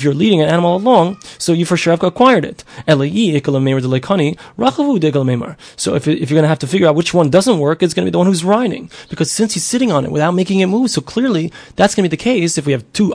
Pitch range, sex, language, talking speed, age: 145-190 Hz, male, English, 250 wpm, 20-39